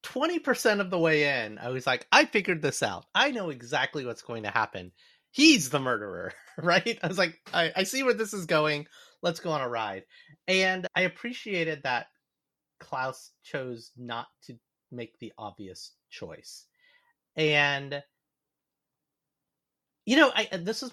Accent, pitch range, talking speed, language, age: American, 120-185 Hz, 160 wpm, English, 30-49